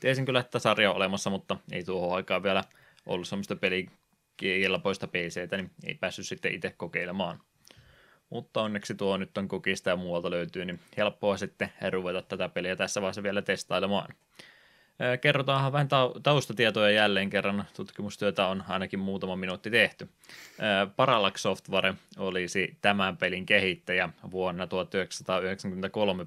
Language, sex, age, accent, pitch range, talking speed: Finnish, male, 20-39, native, 95-105 Hz, 135 wpm